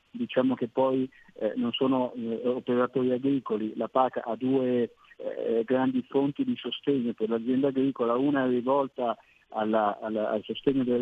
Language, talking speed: Italian, 140 wpm